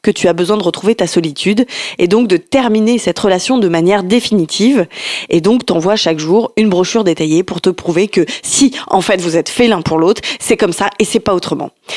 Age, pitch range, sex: 20-39, 180-225 Hz, female